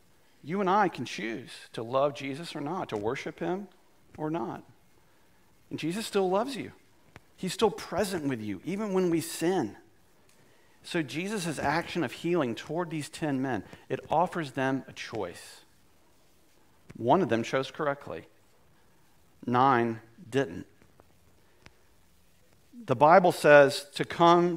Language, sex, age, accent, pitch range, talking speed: English, male, 50-69, American, 120-175 Hz, 135 wpm